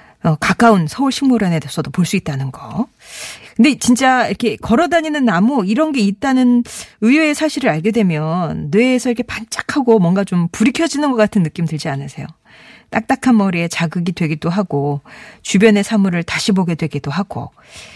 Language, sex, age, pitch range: Korean, female, 40-59, 170-235 Hz